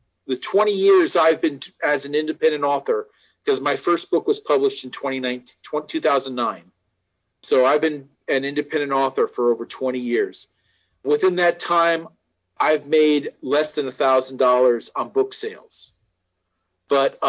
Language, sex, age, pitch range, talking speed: English, male, 40-59, 130-170 Hz, 150 wpm